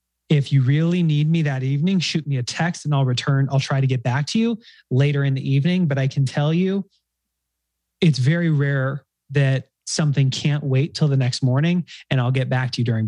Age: 30-49